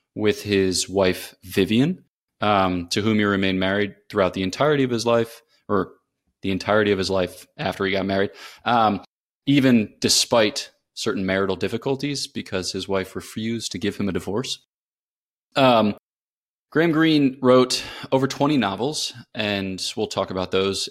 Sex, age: male, 20-39